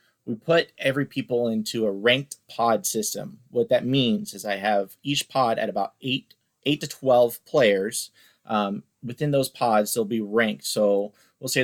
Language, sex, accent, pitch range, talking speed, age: English, male, American, 105-125 Hz, 175 wpm, 30-49